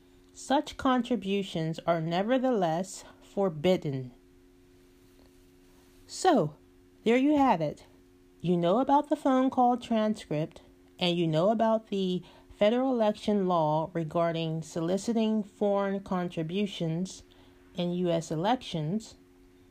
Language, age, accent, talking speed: English, 30-49, American, 95 wpm